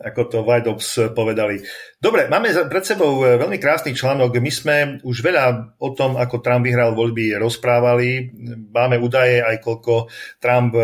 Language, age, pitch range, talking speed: Slovak, 40-59, 115-130 Hz, 155 wpm